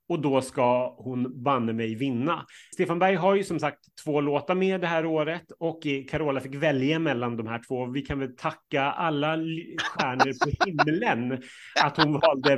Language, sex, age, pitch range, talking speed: Swedish, male, 30-49, 125-160 Hz, 180 wpm